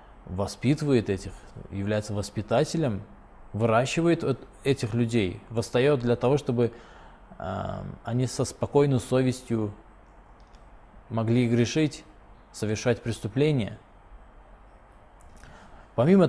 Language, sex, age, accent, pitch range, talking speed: Russian, male, 20-39, native, 100-125 Hz, 75 wpm